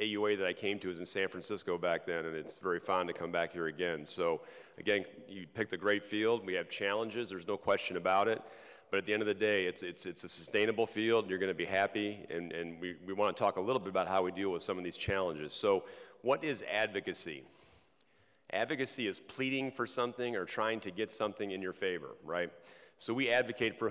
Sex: male